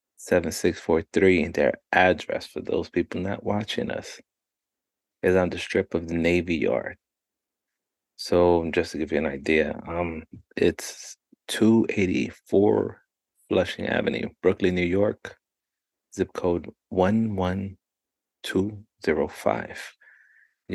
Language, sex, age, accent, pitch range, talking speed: English, male, 30-49, American, 85-95 Hz, 100 wpm